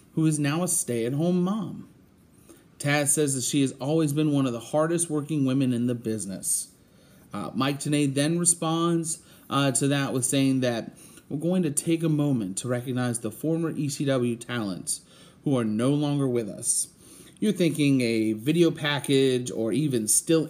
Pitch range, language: 120-165 Hz, English